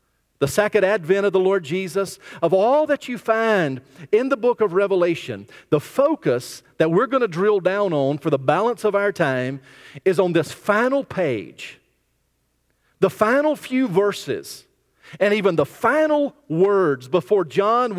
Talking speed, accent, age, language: 160 wpm, American, 40-59, English